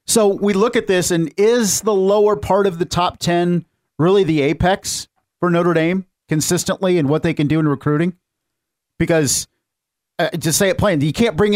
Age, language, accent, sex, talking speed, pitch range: 50-69, English, American, male, 190 wpm, 150-190 Hz